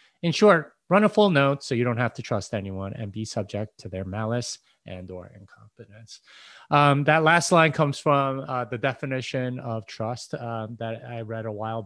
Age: 30-49